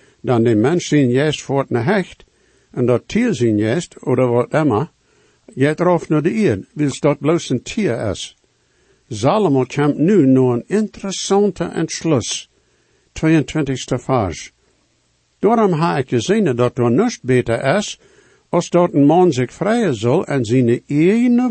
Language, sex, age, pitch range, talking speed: English, male, 60-79, 125-190 Hz, 155 wpm